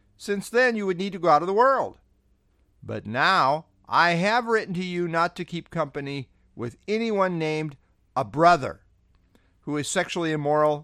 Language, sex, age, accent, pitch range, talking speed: English, male, 50-69, American, 115-180 Hz, 170 wpm